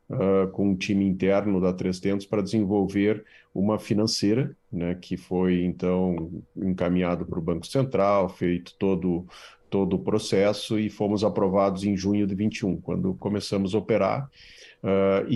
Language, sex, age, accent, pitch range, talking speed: Portuguese, male, 40-59, Brazilian, 100-120 Hz, 145 wpm